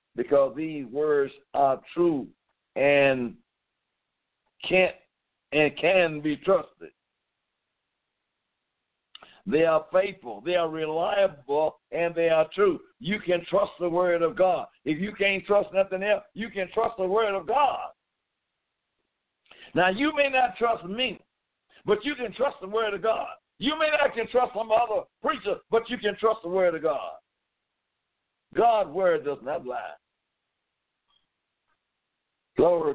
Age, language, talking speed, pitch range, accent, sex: 60-79, English, 140 wpm, 135-210 Hz, American, male